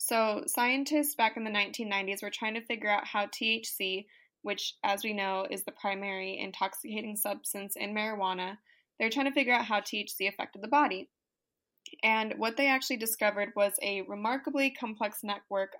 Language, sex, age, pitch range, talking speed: English, female, 20-39, 200-235 Hz, 170 wpm